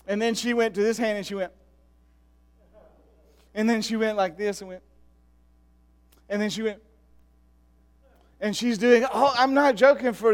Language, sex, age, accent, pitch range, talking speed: English, male, 40-59, American, 185-255 Hz, 175 wpm